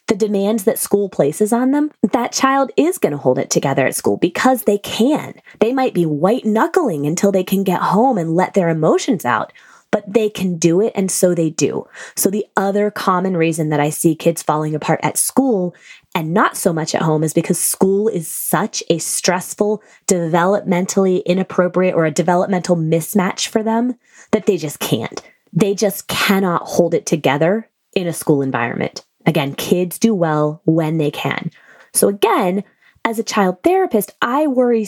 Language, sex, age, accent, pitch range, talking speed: English, female, 20-39, American, 170-220 Hz, 180 wpm